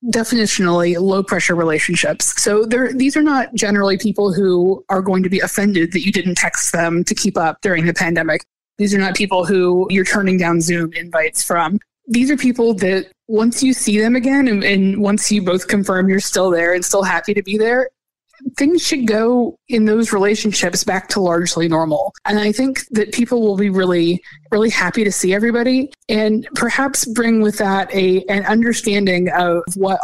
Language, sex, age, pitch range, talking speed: English, female, 20-39, 175-220 Hz, 190 wpm